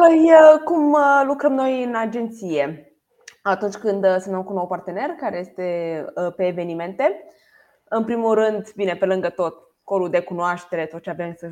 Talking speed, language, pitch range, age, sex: 155 wpm, Romanian, 175-230 Hz, 20-39, female